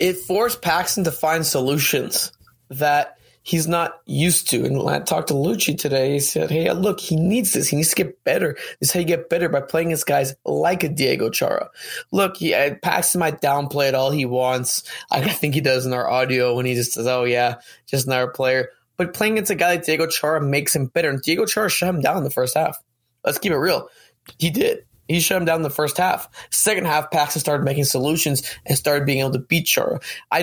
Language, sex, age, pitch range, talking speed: English, male, 20-39, 135-170 Hz, 230 wpm